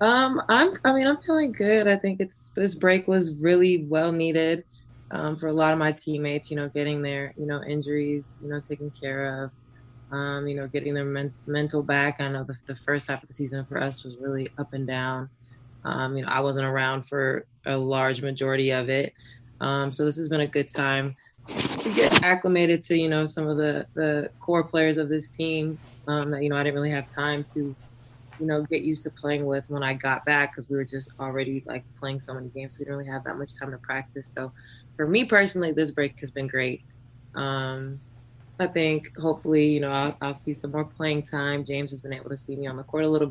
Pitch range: 135-155 Hz